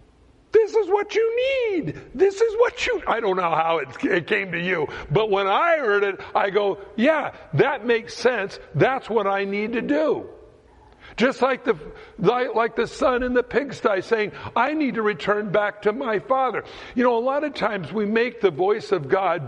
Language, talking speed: English, 195 wpm